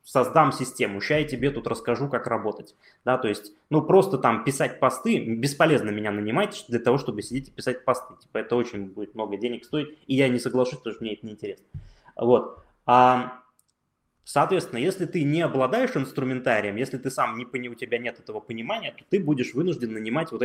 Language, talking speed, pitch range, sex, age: Russian, 200 wpm, 115-150 Hz, male, 20-39